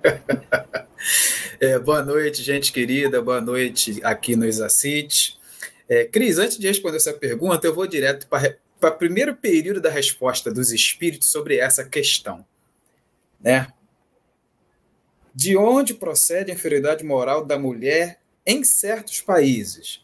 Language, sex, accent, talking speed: Portuguese, male, Brazilian, 125 wpm